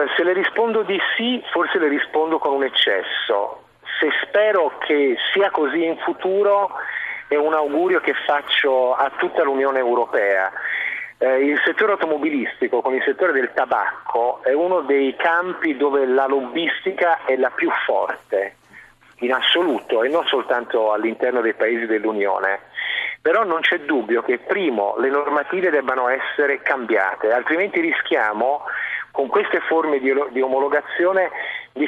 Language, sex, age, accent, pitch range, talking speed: Italian, male, 40-59, native, 135-175 Hz, 145 wpm